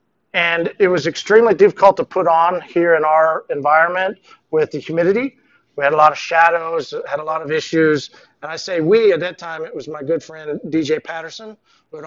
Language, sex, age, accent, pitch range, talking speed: English, male, 40-59, American, 155-200 Hz, 210 wpm